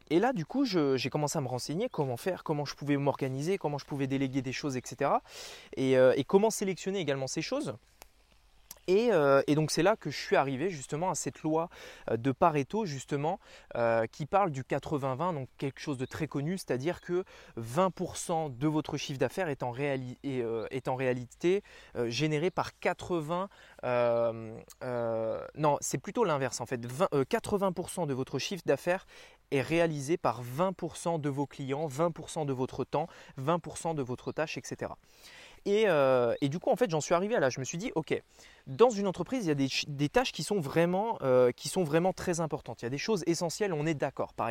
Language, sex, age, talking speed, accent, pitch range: French, male, 20-39, 190 wpm, French, 135-180 Hz